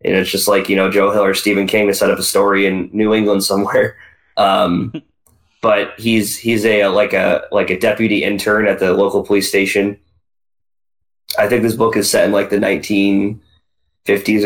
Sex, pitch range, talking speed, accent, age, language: male, 90-105 Hz, 200 wpm, American, 20-39, English